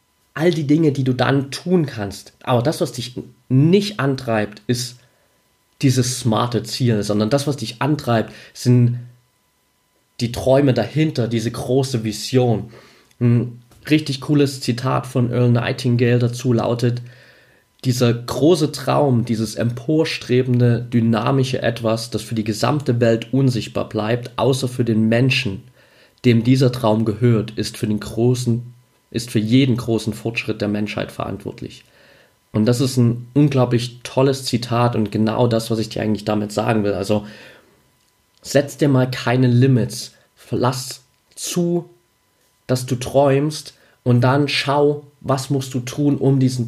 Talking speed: 140 wpm